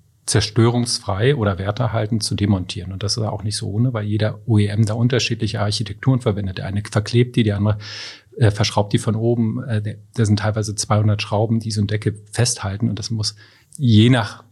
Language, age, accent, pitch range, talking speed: German, 40-59, German, 105-115 Hz, 190 wpm